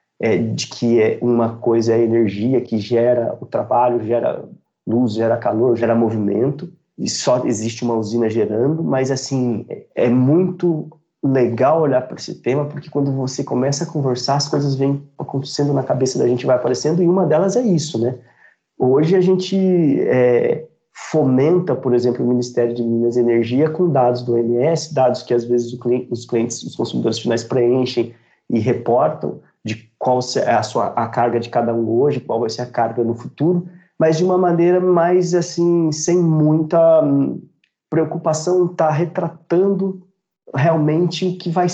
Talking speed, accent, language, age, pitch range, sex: 170 wpm, Brazilian, Portuguese, 30-49, 120-160 Hz, male